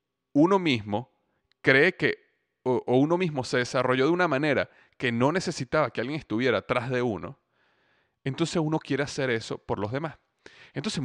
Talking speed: 165 wpm